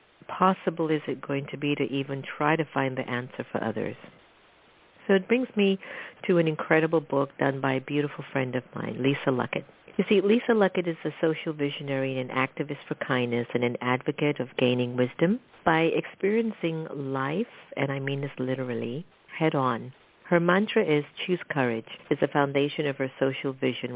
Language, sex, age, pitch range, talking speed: English, female, 50-69, 130-165 Hz, 180 wpm